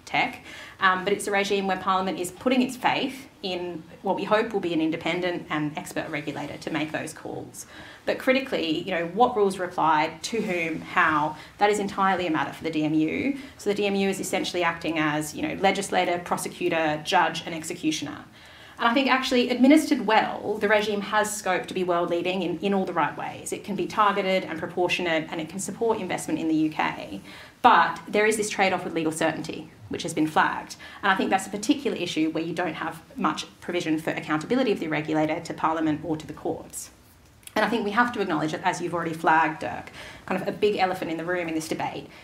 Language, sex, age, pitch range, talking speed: English, female, 30-49, 155-200 Hz, 215 wpm